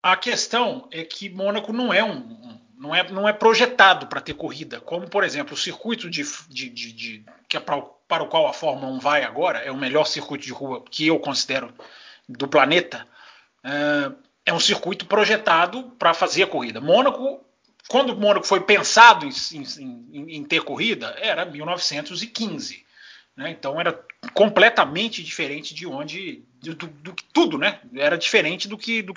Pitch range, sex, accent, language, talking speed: 160-235 Hz, male, Brazilian, Portuguese, 175 wpm